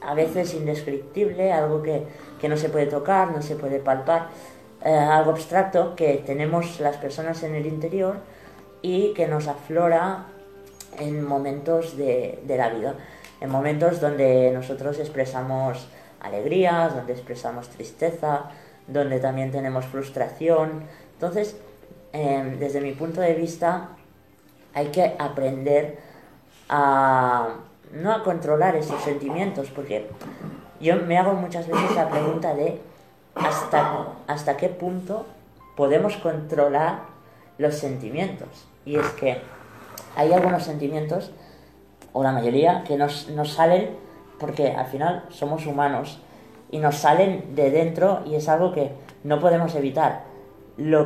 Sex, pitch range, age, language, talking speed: female, 140-175 Hz, 20-39, Spanish, 130 wpm